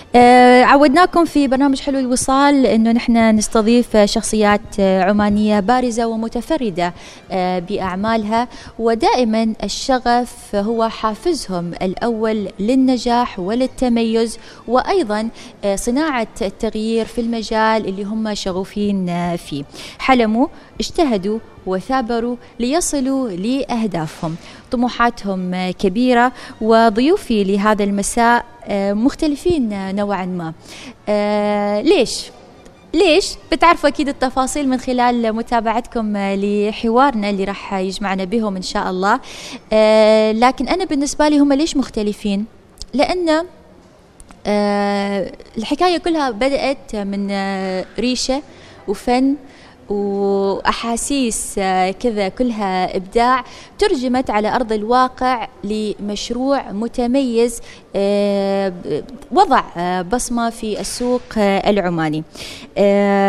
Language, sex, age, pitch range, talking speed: Arabic, female, 20-39, 200-255 Hz, 80 wpm